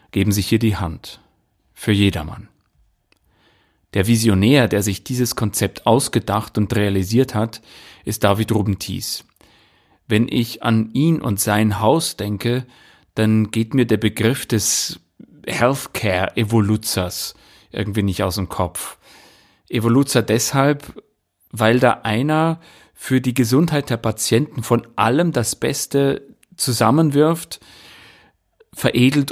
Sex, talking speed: male, 115 wpm